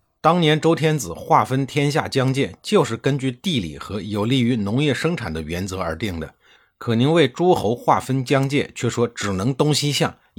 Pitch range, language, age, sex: 95-135 Hz, Chinese, 50-69, male